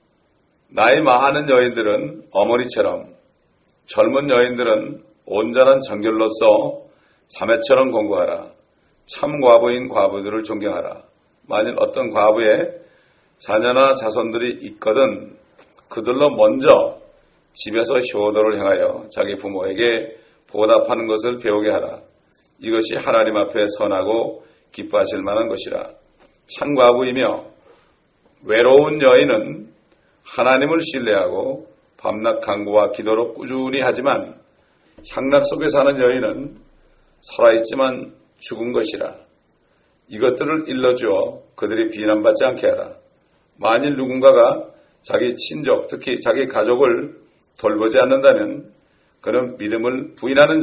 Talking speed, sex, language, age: 90 wpm, male, English, 40-59